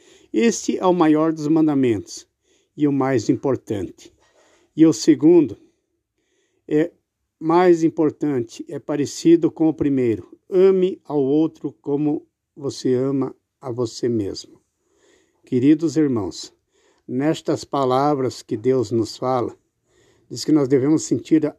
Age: 60-79